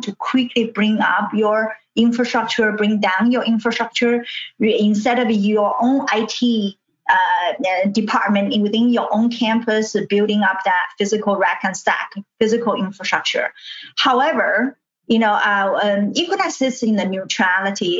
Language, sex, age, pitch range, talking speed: English, female, 30-49, 200-250 Hz, 130 wpm